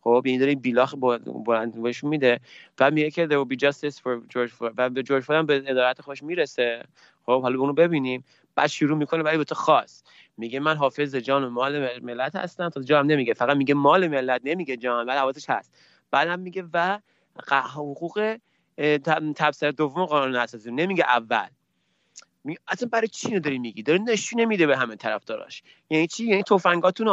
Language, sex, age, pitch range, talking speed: Persian, male, 30-49, 140-195 Hz, 165 wpm